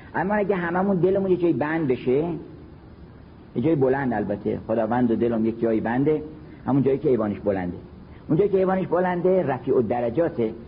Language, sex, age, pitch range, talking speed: Persian, male, 50-69, 115-175 Hz, 175 wpm